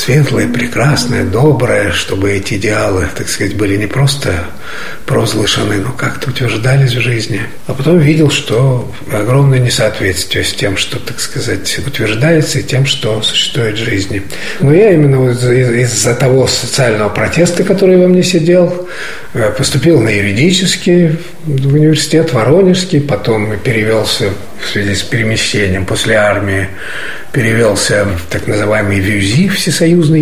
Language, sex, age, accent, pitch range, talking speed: Russian, male, 50-69, native, 110-155 Hz, 135 wpm